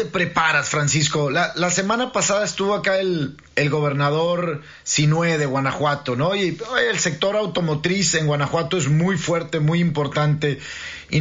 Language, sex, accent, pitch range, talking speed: Spanish, male, Mexican, 150-185 Hz, 150 wpm